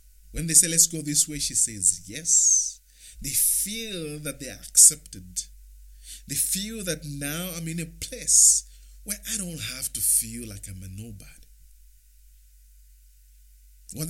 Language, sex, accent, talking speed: English, male, Nigerian, 150 wpm